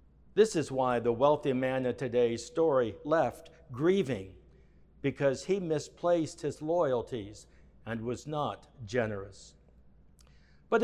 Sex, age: male, 60-79